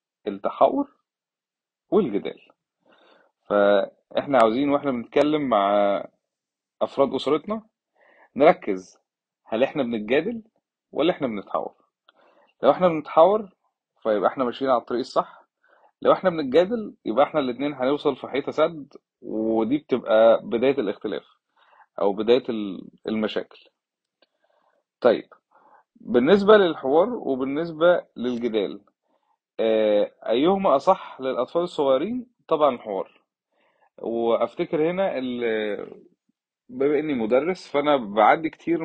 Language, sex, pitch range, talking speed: Arabic, male, 115-175 Hz, 95 wpm